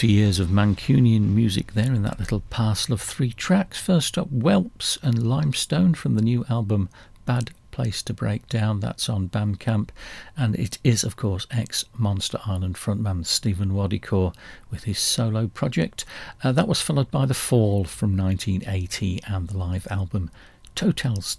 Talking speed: 160 wpm